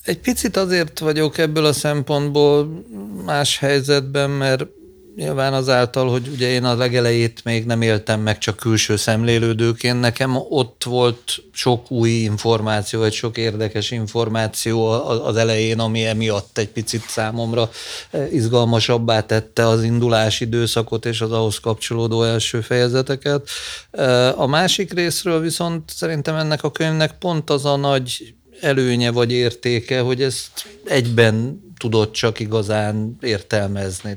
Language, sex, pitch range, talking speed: Hungarian, male, 110-130 Hz, 130 wpm